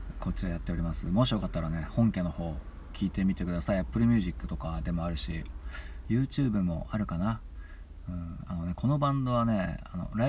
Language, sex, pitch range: Japanese, male, 75-95 Hz